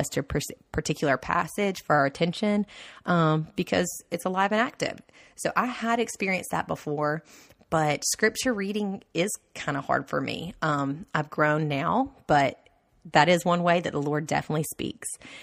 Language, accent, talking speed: English, American, 165 wpm